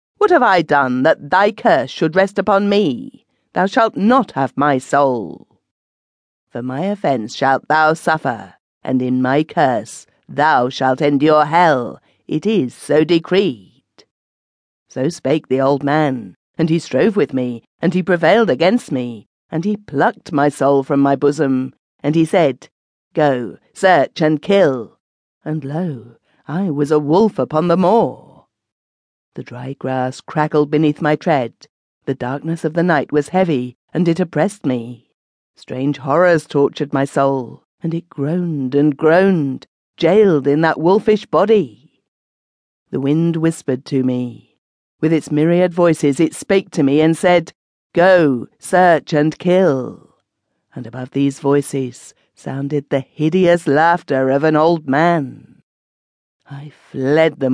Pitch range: 135-170 Hz